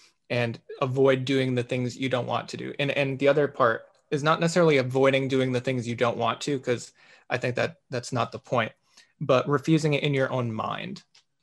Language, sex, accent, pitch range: English, male, American, 125-140 Hz